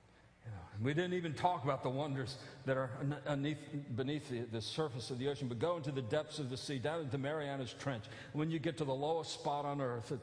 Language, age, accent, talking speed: English, 50-69, American, 230 wpm